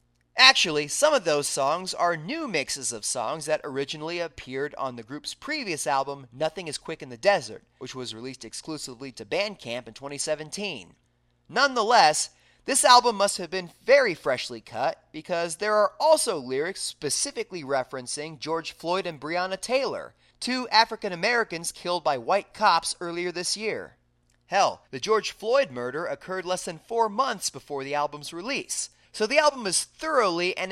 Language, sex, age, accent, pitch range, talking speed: English, male, 30-49, American, 140-215 Hz, 160 wpm